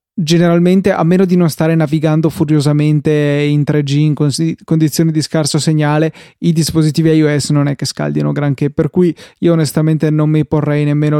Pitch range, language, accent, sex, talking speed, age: 145-165 Hz, Italian, native, male, 165 wpm, 20-39